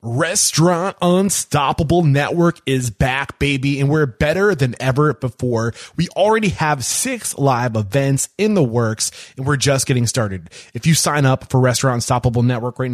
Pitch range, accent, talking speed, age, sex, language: 125-160 Hz, American, 160 wpm, 20-39, male, English